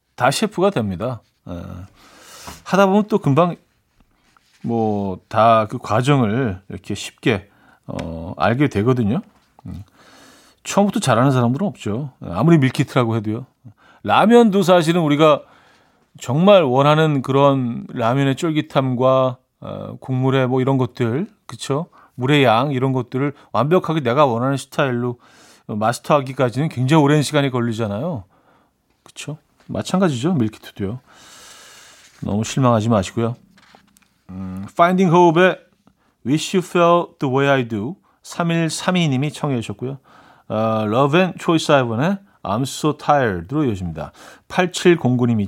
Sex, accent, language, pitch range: male, native, Korean, 115-165 Hz